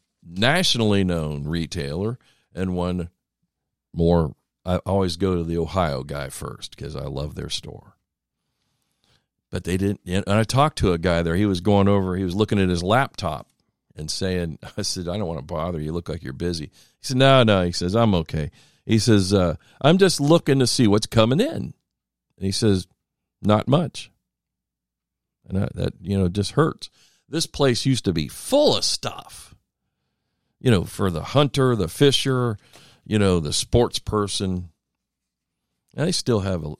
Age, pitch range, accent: 50-69, 85-110 Hz, American